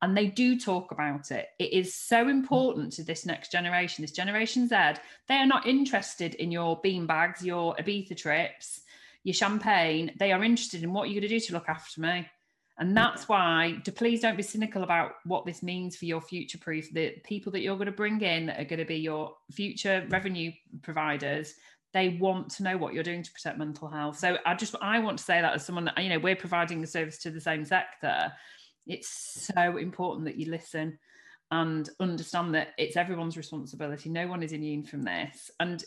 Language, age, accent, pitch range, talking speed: English, 40-59, British, 160-205 Hz, 210 wpm